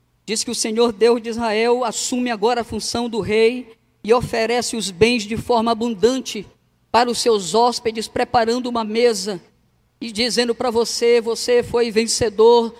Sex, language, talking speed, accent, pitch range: female, Portuguese, 160 wpm, Brazilian, 235-330 Hz